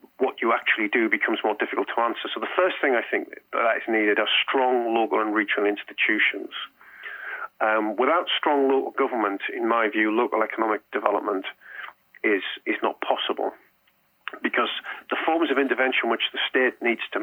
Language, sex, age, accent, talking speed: English, male, 40-59, British, 170 wpm